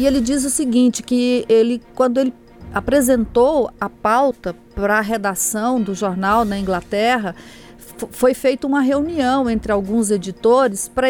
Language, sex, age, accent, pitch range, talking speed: Portuguese, female, 40-59, Brazilian, 205-265 Hz, 145 wpm